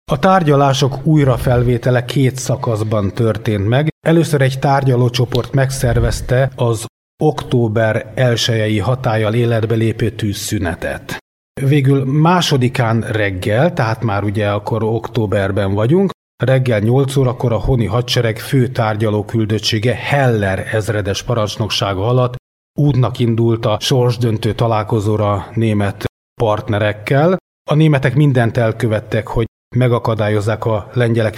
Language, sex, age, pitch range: Hungarian, male, 30-49, 110-130 Hz